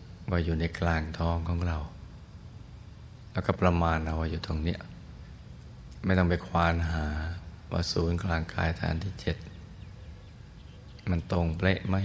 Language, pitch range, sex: Thai, 85-105 Hz, male